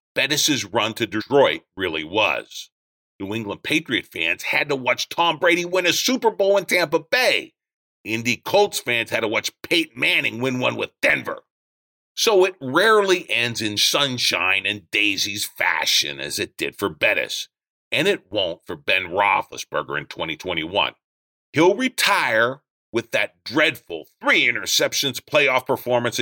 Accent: American